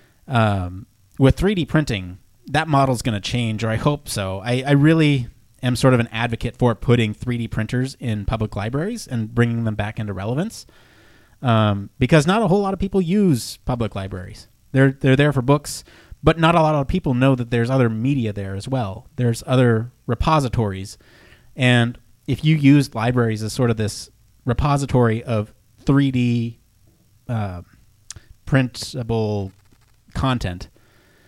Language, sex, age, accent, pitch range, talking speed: English, male, 30-49, American, 110-130 Hz, 155 wpm